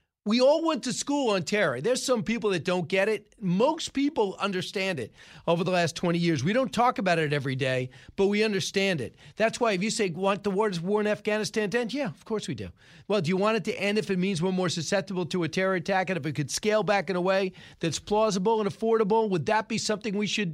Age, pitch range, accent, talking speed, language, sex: 40-59, 170-210 Hz, American, 255 wpm, English, male